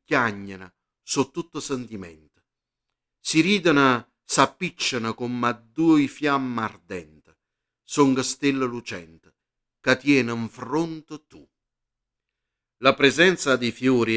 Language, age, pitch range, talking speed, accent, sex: Italian, 50-69, 115-150 Hz, 100 wpm, native, male